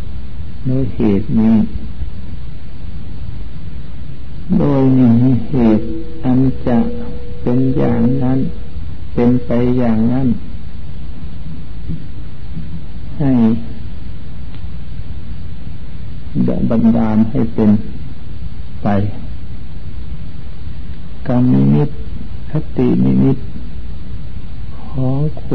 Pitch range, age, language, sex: 80-115 Hz, 60-79, Thai, male